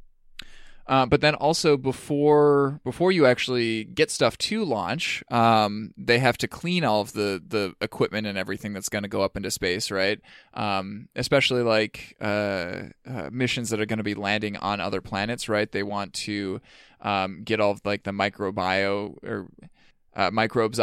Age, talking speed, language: 20-39, 175 wpm, English